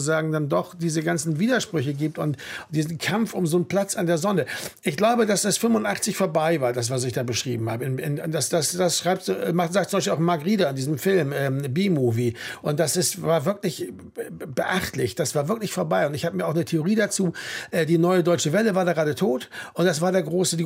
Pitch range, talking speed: 145-190 Hz, 235 wpm